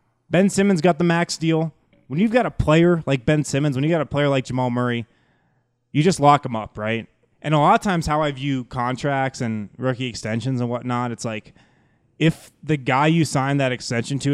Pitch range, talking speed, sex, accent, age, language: 115-150 Hz, 220 wpm, male, American, 20-39, English